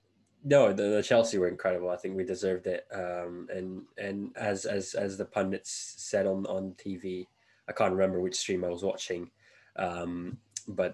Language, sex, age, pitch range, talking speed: English, male, 20-39, 95-110 Hz, 180 wpm